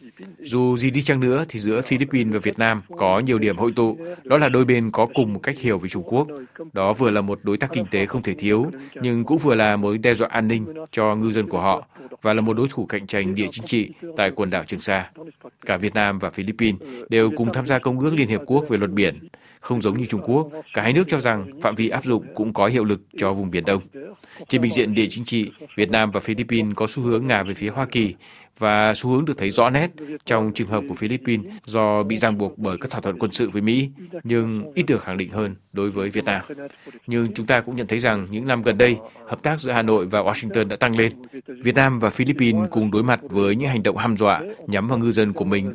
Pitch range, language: 105-125 Hz, Vietnamese